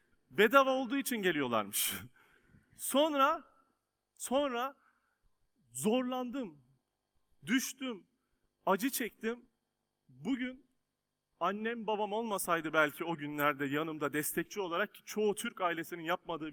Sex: male